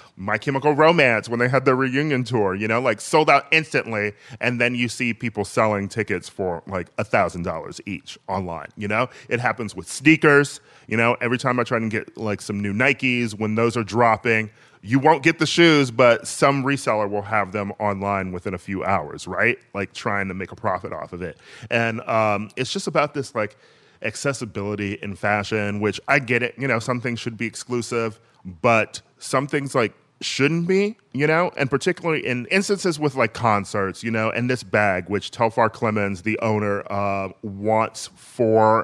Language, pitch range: English, 100-125 Hz